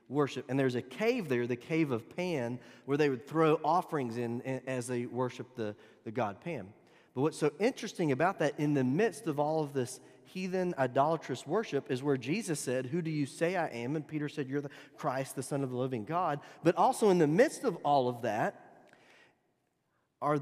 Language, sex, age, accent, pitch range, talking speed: English, male, 30-49, American, 125-165 Hz, 210 wpm